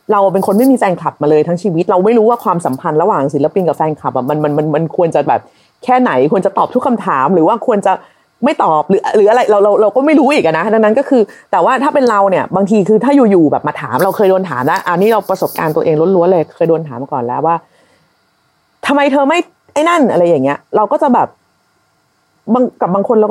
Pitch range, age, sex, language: 165-255 Hz, 30-49, female, Thai